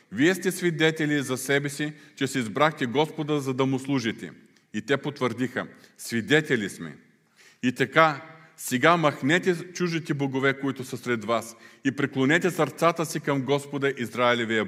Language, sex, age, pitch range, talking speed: Bulgarian, male, 40-59, 110-140 Hz, 145 wpm